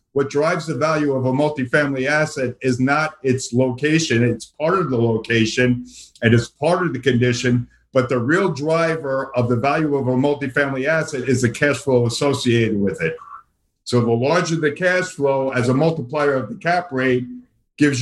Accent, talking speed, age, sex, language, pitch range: American, 185 wpm, 50-69, male, English, 125-150 Hz